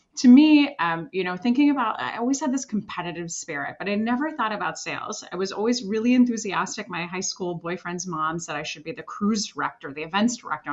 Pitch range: 170-230 Hz